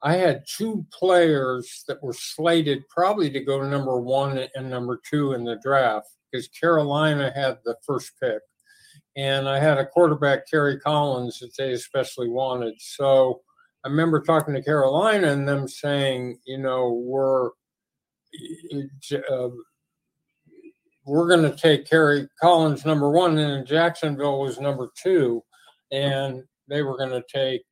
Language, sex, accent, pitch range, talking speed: English, male, American, 135-165 Hz, 145 wpm